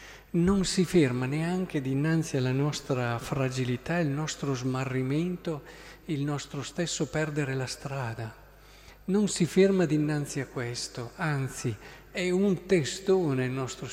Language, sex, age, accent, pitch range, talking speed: Italian, male, 50-69, native, 130-160 Hz, 125 wpm